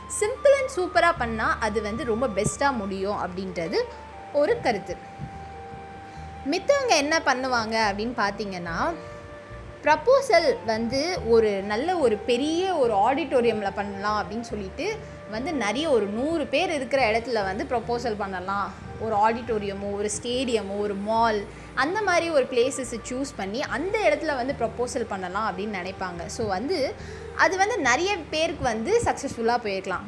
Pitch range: 210-300 Hz